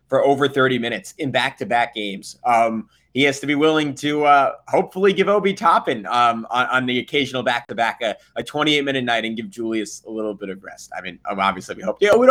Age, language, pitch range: 20-39, English, 125-155 Hz